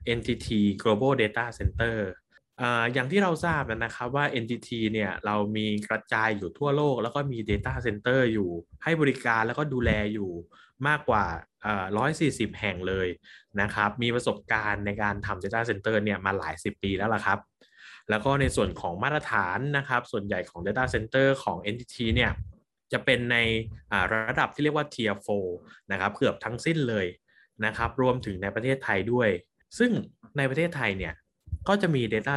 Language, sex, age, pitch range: Thai, male, 20-39, 105-130 Hz